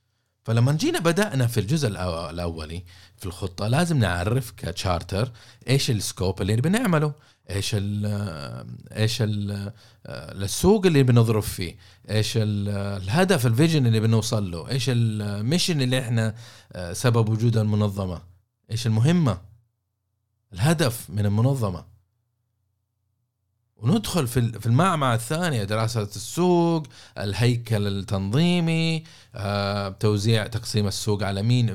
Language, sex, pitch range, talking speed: Arabic, male, 105-140 Hz, 110 wpm